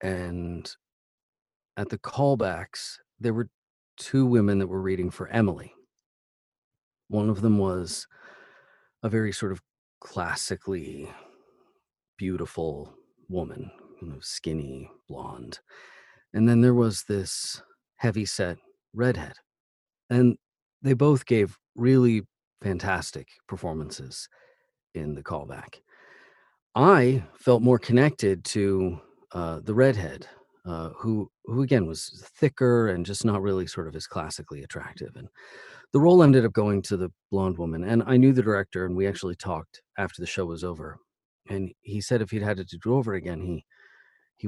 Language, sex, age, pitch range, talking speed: English, male, 40-59, 90-115 Hz, 140 wpm